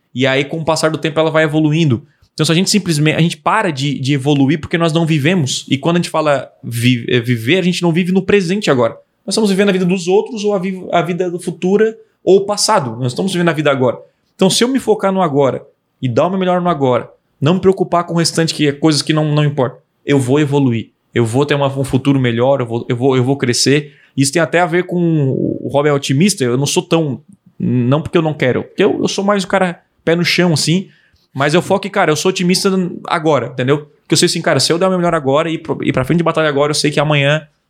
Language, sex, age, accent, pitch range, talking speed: Portuguese, male, 20-39, Brazilian, 140-175 Hz, 270 wpm